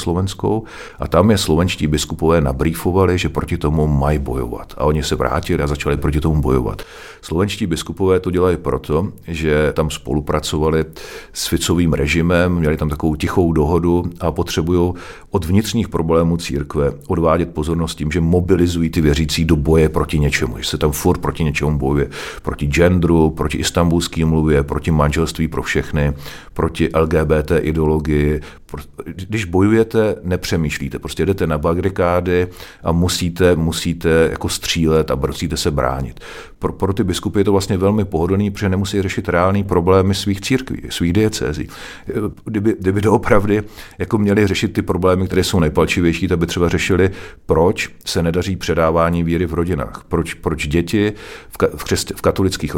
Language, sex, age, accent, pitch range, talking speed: Czech, male, 40-59, native, 75-95 Hz, 160 wpm